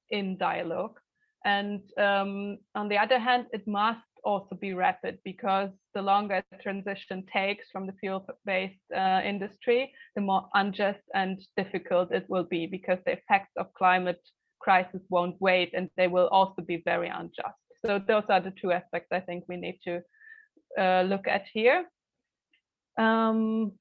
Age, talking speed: 20-39, 160 wpm